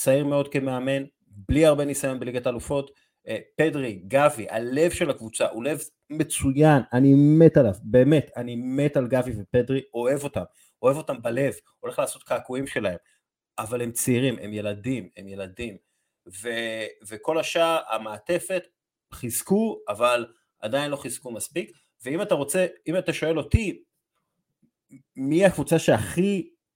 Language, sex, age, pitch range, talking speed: Hebrew, male, 30-49, 115-155 Hz, 135 wpm